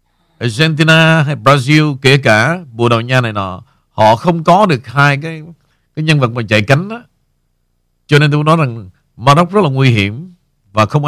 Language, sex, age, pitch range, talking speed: Vietnamese, male, 50-69, 110-150 Hz, 185 wpm